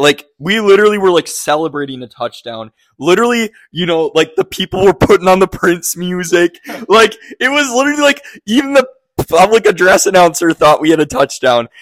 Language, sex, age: English, male, 20-39